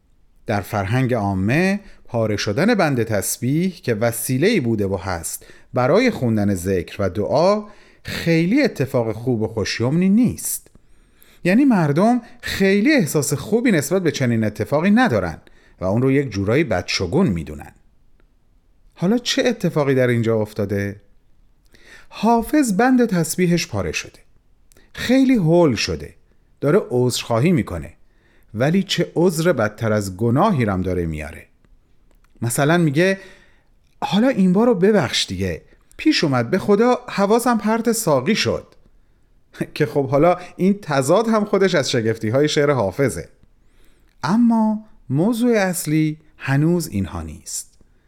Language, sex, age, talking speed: Persian, male, 40-59, 125 wpm